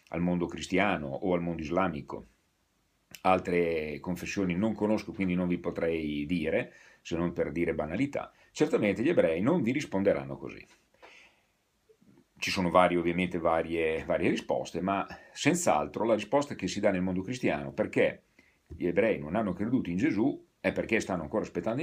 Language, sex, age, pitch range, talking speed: Italian, male, 40-59, 85-105 Hz, 160 wpm